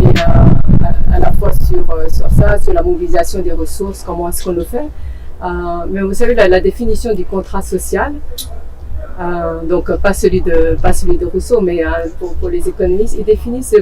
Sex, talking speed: female, 190 wpm